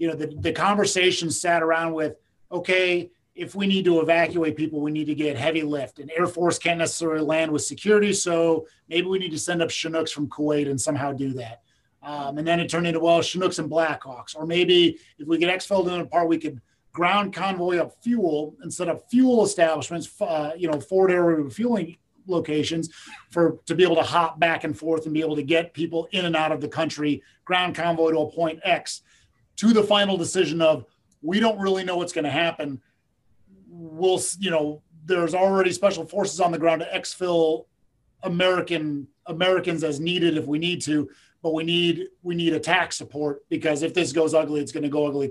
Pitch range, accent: 150-175 Hz, American